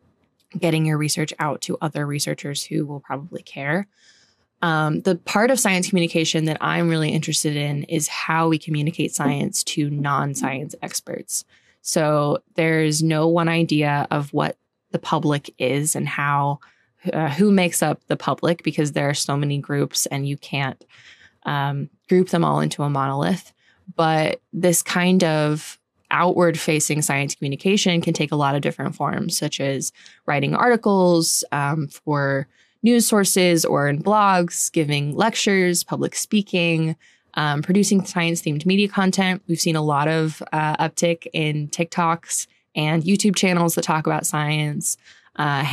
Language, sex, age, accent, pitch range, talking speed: English, female, 20-39, American, 145-175 Hz, 150 wpm